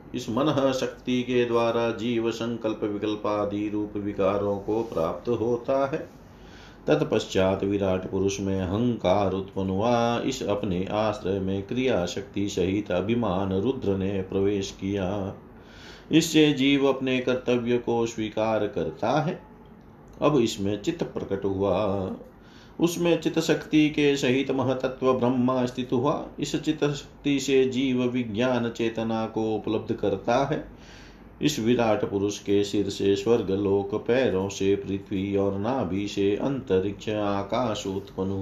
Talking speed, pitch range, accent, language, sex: 130 wpm, 100-125 Hz, native, Hindi, male